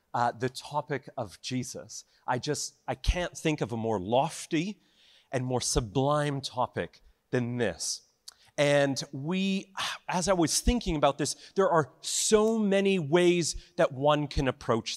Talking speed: 150 wpm